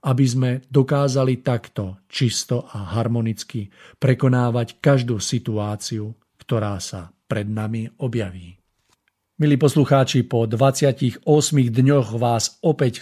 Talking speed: 100 wpm